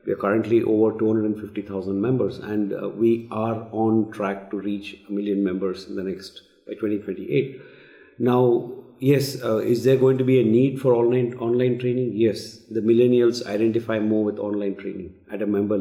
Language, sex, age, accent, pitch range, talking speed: Spanish, male, 50-69, Indian, 105-125 Hz, 175 wpm